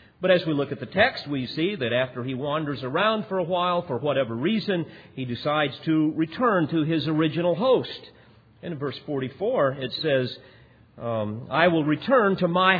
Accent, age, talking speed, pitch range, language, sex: American, 50-69, 190 wpm, 125-185 Hz, English, male